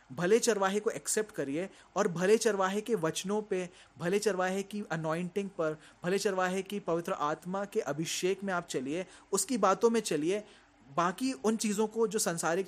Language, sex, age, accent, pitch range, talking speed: Hindi, male, 30-49, native, 170-215 Hz, 170 wpm